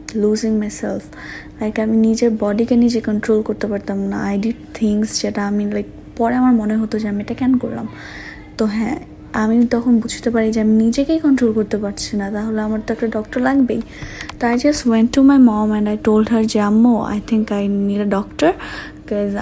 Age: 20-39